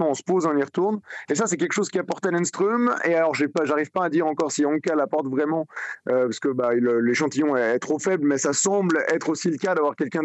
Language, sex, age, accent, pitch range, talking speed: French, male, 20-39, French, 145-175 Hz, 270 wpm